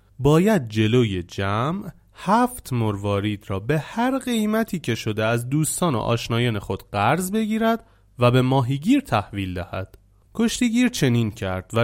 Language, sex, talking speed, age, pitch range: Persian, male, 135 wpm, 30-49, 105-150 Hz